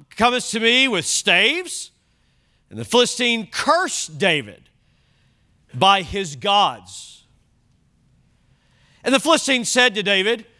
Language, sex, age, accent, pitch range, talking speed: English, male, 40-59, American, 195-275 Hz, 110 wpm